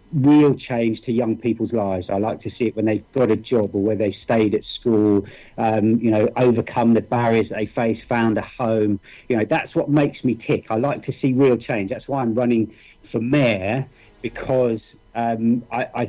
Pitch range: 110-130 Hz